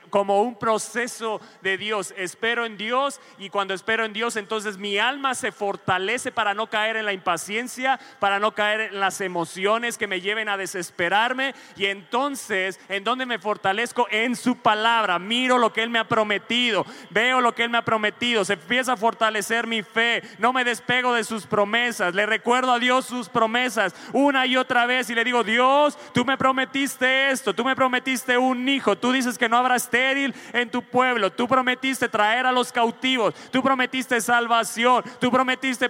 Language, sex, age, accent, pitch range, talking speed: Spanish, male, 30-49, Mexican, 225-260 Hz, 190 wpm